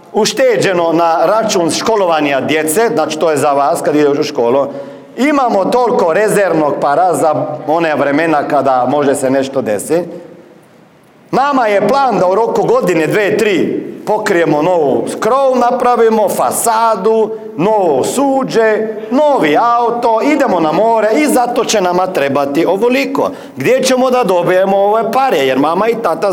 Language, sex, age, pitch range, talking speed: Croatian, male, 50-69, 170-250 Hz, 145 wpm